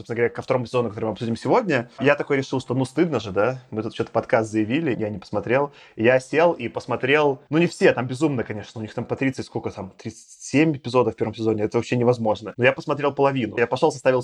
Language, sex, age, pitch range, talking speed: Russian, male, 20-39, 115-140 Hz, 240 wpm